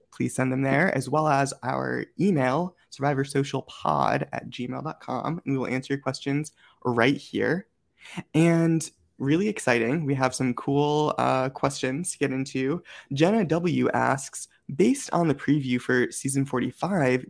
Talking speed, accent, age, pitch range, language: 145 wpm, American, 20-39, 130-165 Hz, English